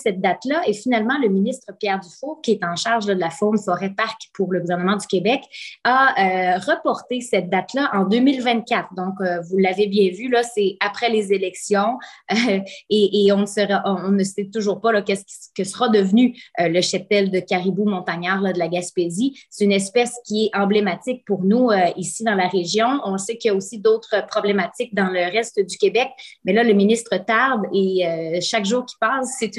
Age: 20-39